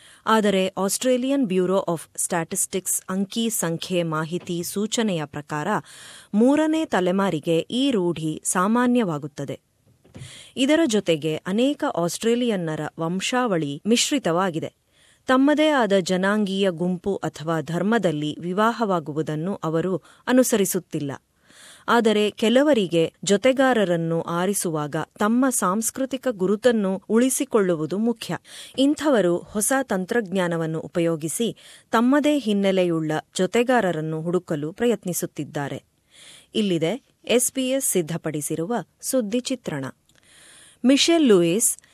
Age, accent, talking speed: 20-39, native, 80 wpm